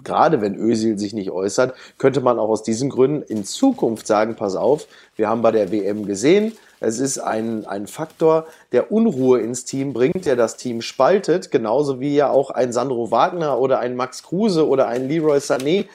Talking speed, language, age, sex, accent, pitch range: 195 wpm, German, 30-49, male, German, 120-195 Hz